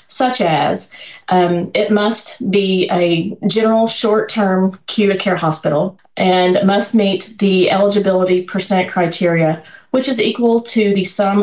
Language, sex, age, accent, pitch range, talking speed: English, female, 30-49, American, 170-200 Hz, 130 wpm